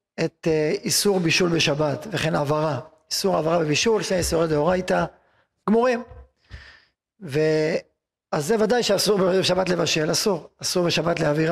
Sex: male